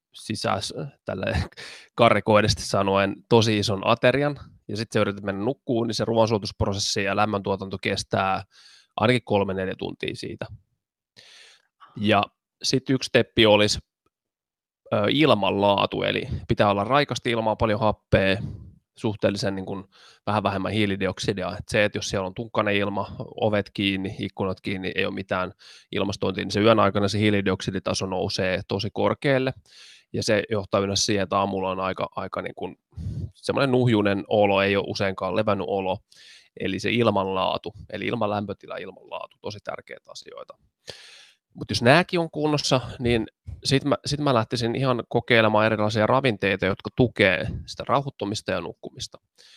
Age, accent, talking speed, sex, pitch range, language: 20-39, native, 145 wpm, male, 100-115 Hz, Finnish